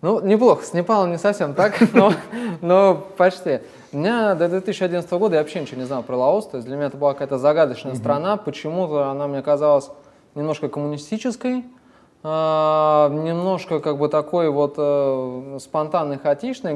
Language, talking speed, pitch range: Russian, 150 wpm, 140-175 Hz